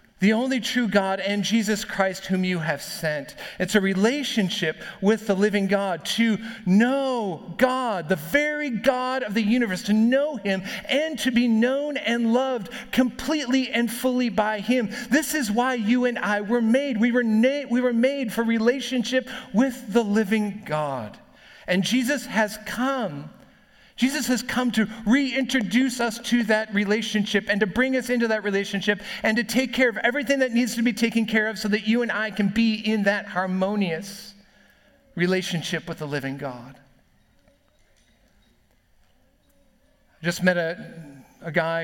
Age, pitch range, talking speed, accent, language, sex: 40-59, 170-245 Hz, 165 wpm, American, English, male